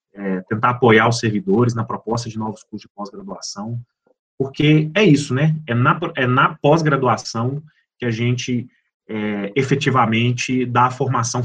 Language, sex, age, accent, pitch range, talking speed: Portuguese, male, 30-49, Brazilian, 110-140 Hz, 150 wpm